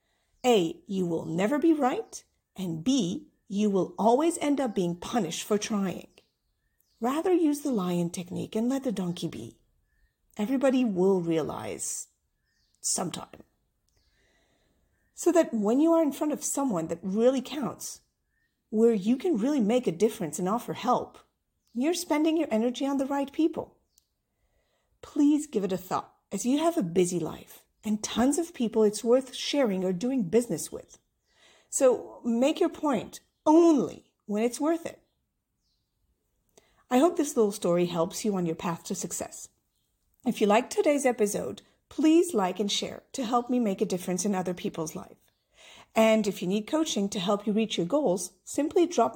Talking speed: 165 wpm